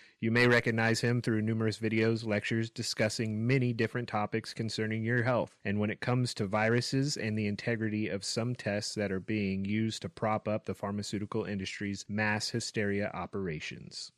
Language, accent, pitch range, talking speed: English, American, 110-130 Hz, 170 wpm